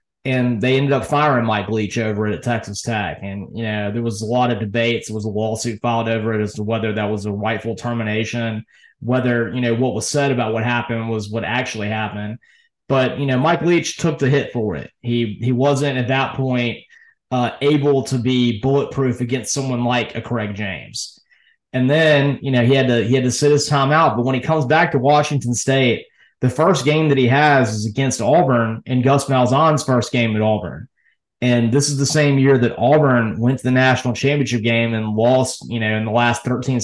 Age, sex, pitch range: 20-39, male, 115-140 Hz